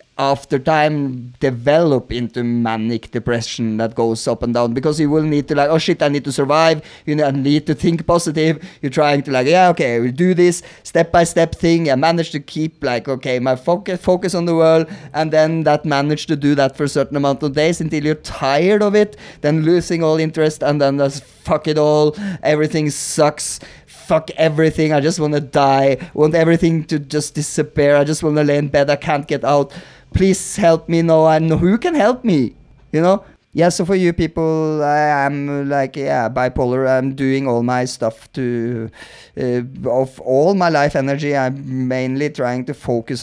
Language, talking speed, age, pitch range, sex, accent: English, 205 wpm, 30-49, 130-160 Hz, male, Norwegian